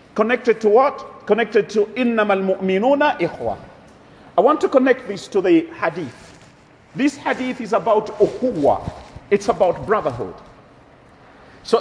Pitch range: 200-260 Hz